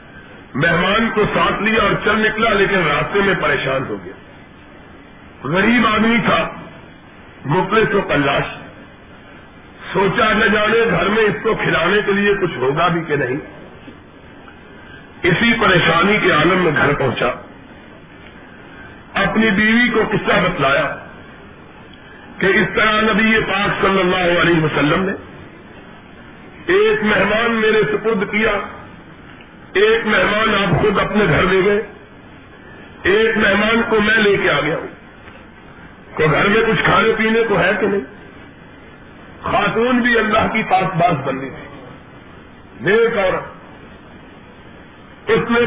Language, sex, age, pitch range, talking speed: Urdu, male, 50-69, 180-220 Hz, 130 wpm